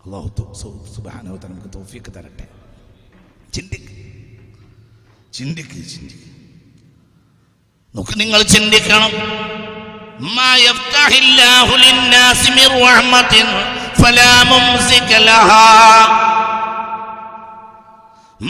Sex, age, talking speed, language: male, 50-69, 90 wpm, Malayalam